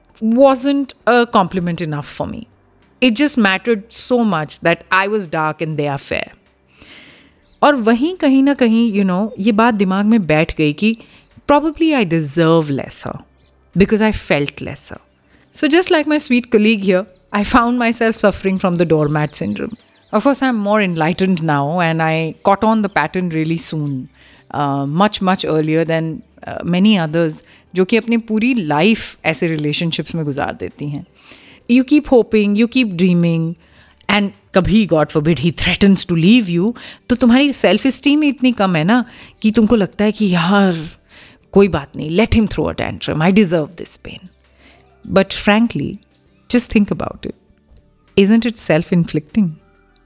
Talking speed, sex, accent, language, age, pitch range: 170 wpm, female, native, Hindi, 30-49, 165-230 Hz